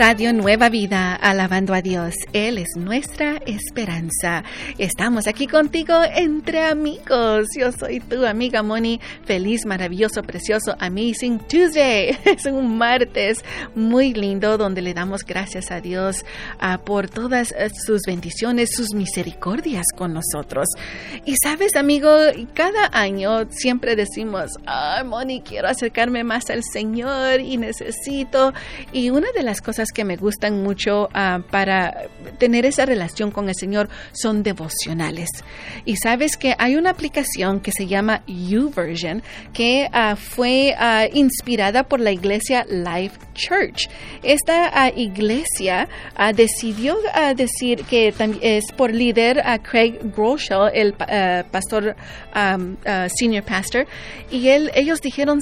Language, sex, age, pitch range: Spanish, female, 40-59, 195-260 Hz